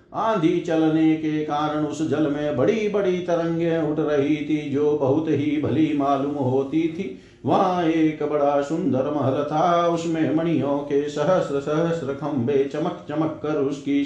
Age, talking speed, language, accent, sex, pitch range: 50-69, 155 wpm, Hindi, native, male, 140-170 Hz